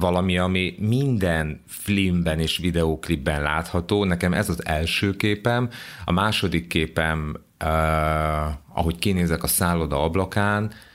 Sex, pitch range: male, 80-95 Hz